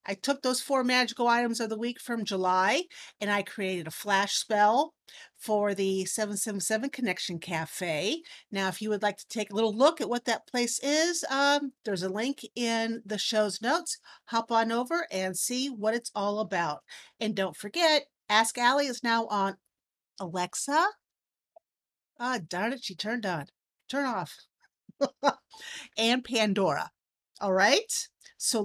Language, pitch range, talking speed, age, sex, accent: English, 195-275 Hz, 160 wpm, 50-69, female, American